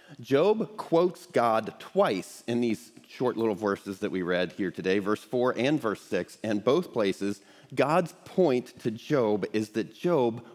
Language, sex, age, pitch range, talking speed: English, male, 40-59, 105-145 Hz, 165 wpm